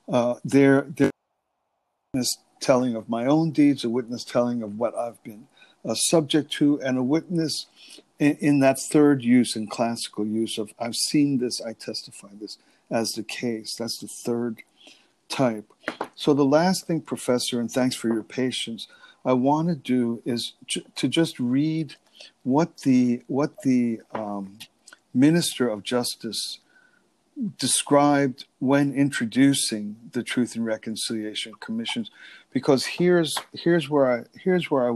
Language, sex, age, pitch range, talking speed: English, male, 50-69, 120-150 Hz, 145 wpm